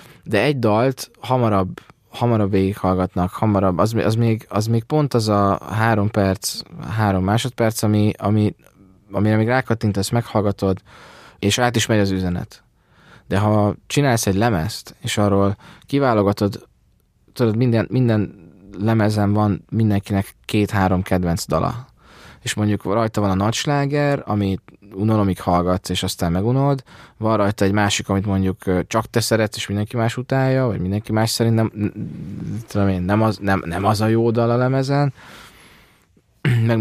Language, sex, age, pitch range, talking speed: Hungarian, male, 20-39, 95-115 Hz, 140 wpm